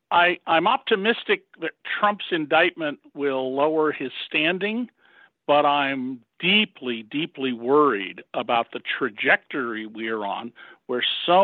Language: English